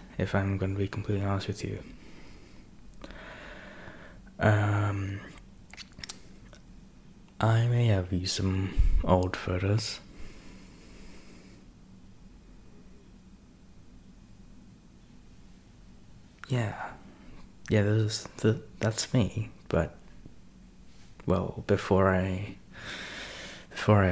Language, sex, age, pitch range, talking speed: English, male, 20-39, 90-105 Hz, 70 wpm